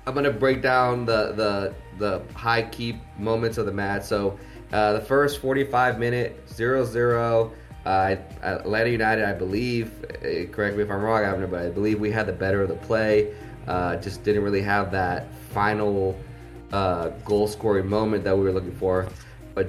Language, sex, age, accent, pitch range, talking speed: English, male, 20-39, American, 100-120 Hz, 175 wpm